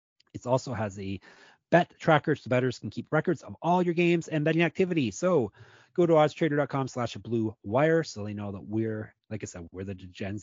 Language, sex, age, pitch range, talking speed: English, male, 30-49, 115-150 Hz, 200 wpm